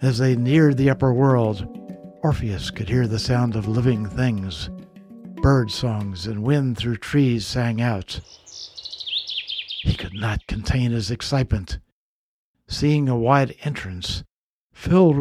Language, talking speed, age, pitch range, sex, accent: English, 130 wpm, 60-79, 100-130 Hz, male, American